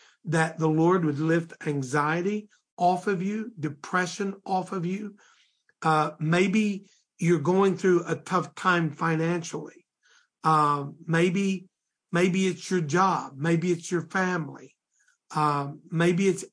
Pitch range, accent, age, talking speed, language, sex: 160-190 Hz, American, 50-69, 125 wpm, English, male